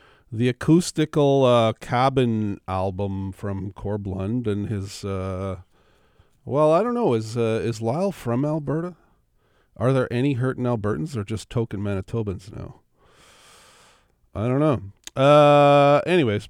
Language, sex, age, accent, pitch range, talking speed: English, male, 50-69, American, 105-150 Hz, 130 wpm